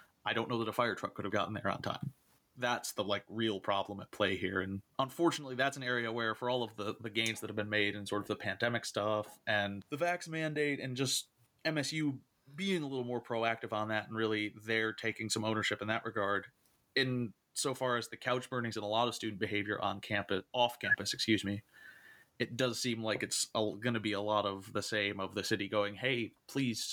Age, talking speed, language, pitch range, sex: 30-49, 230 wpm, English, 105-125 Hz, male